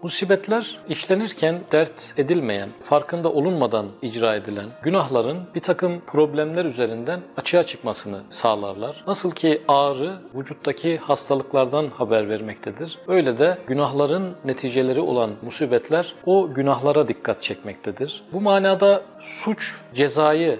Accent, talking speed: native, 110 wpm